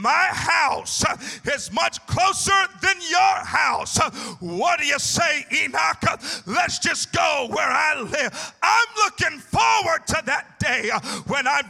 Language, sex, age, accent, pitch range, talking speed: English, male, 40-59, American, 275-380 Hz, 140 wpm